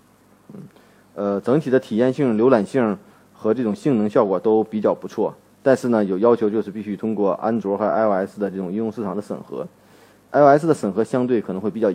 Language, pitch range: Chinese, 100-130 Hz